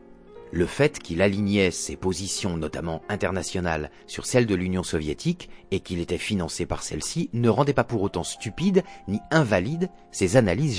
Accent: French